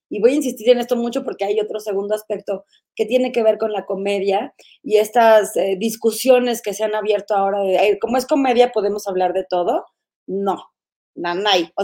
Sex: female